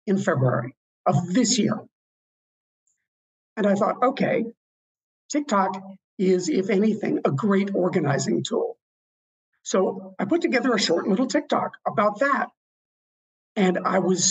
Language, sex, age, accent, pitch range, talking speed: English, male, 50-69, American, 190-235 Hz, 125 wpm